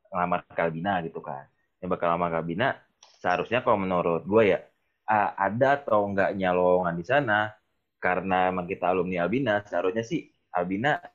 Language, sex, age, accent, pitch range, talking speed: Indonesian, male, 20-39, native, 90-120 Hz, 145 wpm